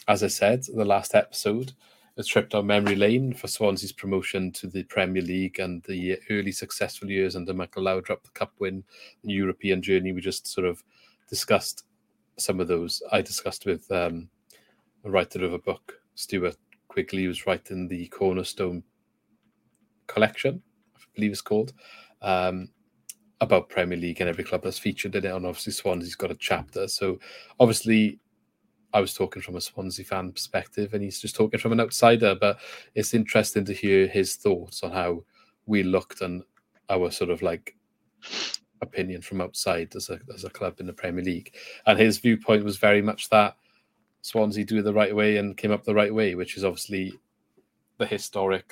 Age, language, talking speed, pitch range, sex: 30-49, English, 180 wpm, 90-105 Hz, male